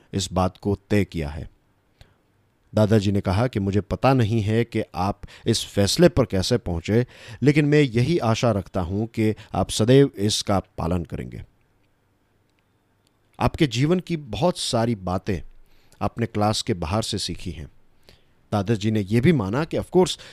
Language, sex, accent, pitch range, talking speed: Hindi, male, native, 100-130 Hz, 160 wpm